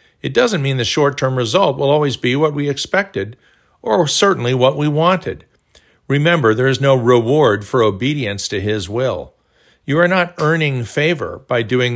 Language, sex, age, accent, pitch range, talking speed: English, male, 50-69, American, 110-140 Hz, 170 wpm